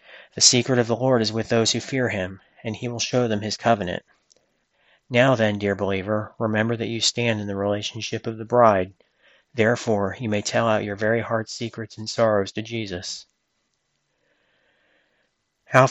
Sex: male